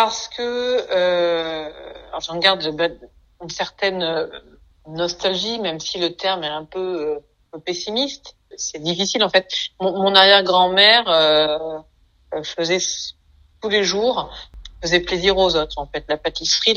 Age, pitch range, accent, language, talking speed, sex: 50-69, 160-195 Hz, French, French, 140 wpm, female